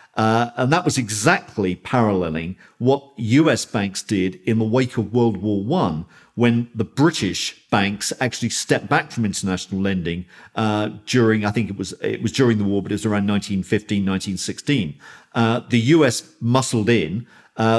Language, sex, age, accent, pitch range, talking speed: English, male, 50-69, British, 105-130 Hz, 160 wpm